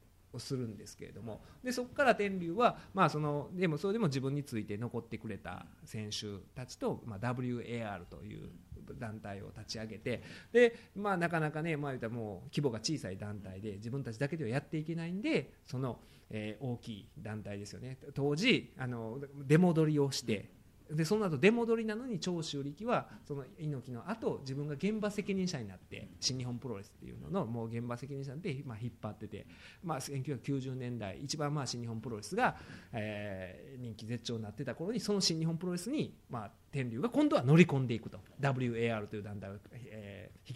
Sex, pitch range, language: male, 110-155 Hz, Japanese